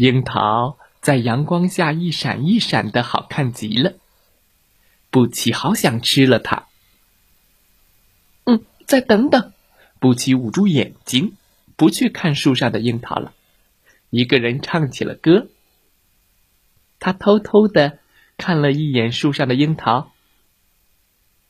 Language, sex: Chinese, male